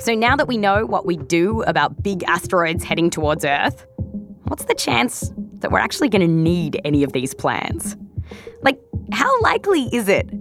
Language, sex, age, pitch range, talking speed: English, female, 20-39, 170-240 Hz, 185 wpm